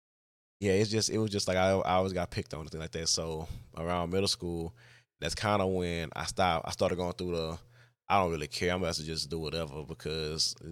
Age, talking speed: 20-39, 240 wpm